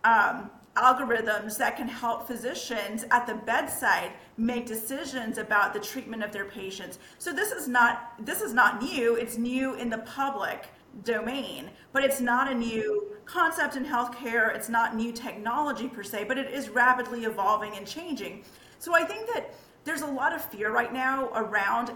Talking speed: 170 wpm